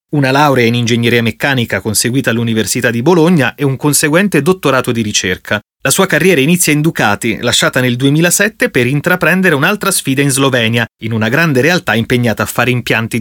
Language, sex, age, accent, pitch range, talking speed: Italian, male, 30-49, native, 120-160 Hz, 175 wpm